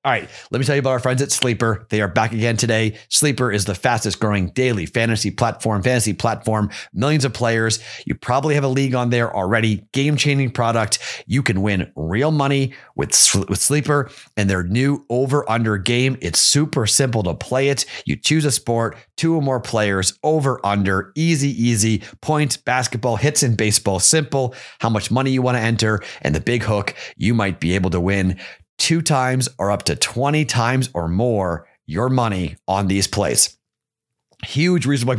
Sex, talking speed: male, 185 wpm